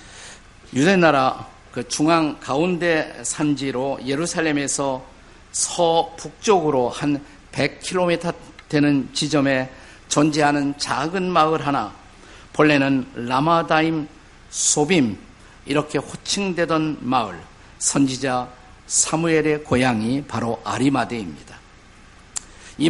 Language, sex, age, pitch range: Korean, male, 50-69, 130-165 Hz